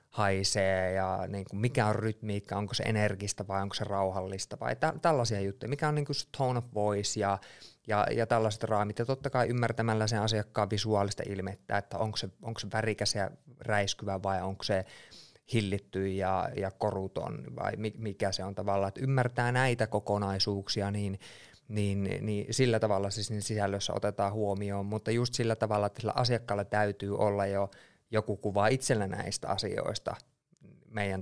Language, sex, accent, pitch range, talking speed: Finnish, male, native, 100-120 Hz, 165 wpm